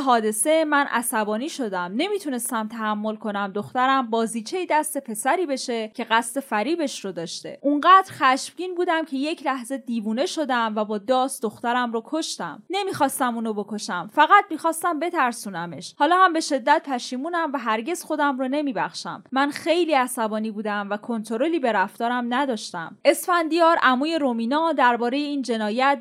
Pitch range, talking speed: 220-300 Hz, 145 wpm